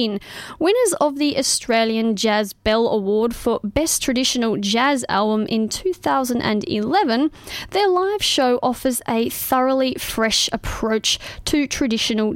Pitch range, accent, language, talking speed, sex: 220-290 Hz, Australian, English, 115 wpm, female